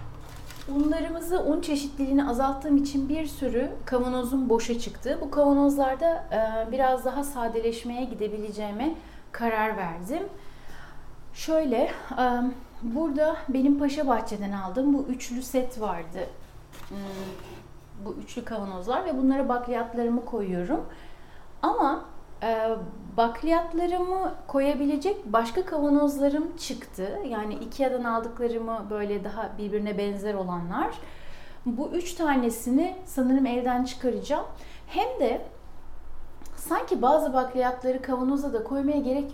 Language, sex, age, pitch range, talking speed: Turkish, female, 30-49, 230-295 Hz, 100 wpm